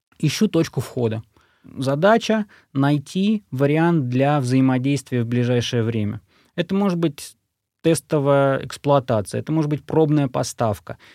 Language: Russian